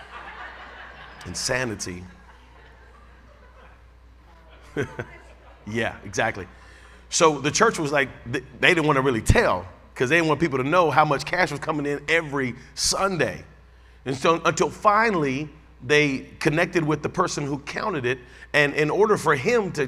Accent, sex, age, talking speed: American, male, 40-59, 140 wpm